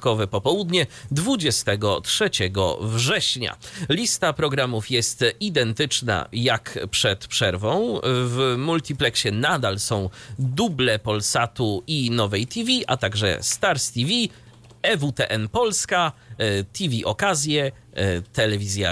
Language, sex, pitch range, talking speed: Polish, male, 110-150 Hz, 90 wpm